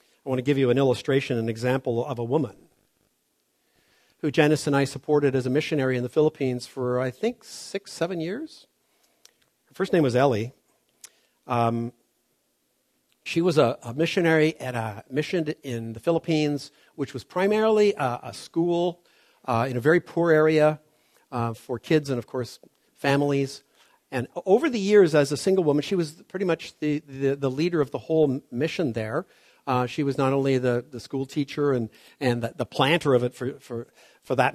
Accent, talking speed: American, 185 wpm